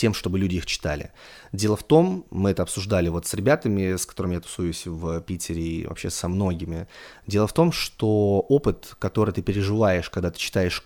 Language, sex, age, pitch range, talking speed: Russian, male, 20-39, 90-120 Hz, 195 wpm